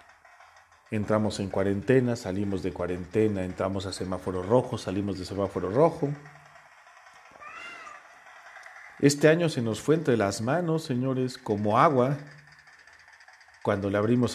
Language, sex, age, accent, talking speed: Spanish, male, 40-59, Mexican, 115 wpm